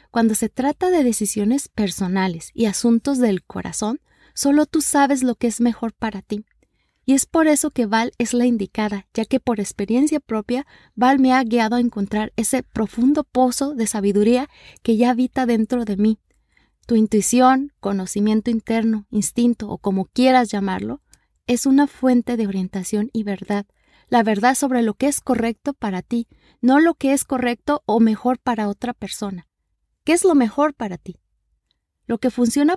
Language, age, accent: Spanish, 20-39, Mexican